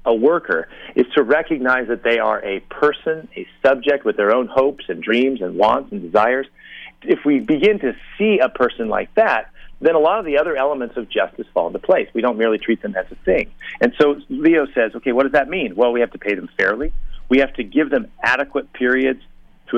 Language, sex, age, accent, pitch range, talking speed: English, male, 40-59, American, 110-150 Hz, 230 wpm